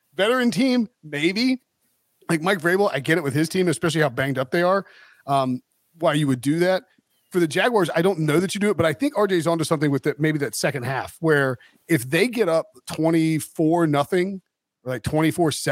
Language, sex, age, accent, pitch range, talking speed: English, male, 40-59, American, 145-185 Hz, 215 wpm